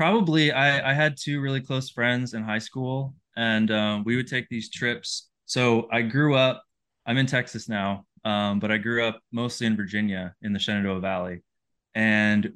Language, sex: English, male